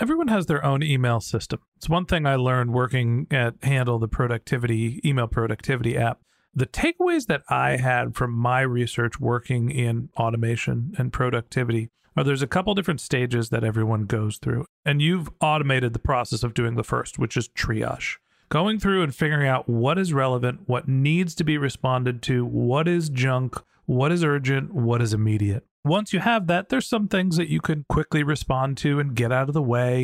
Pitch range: 125-160 Hz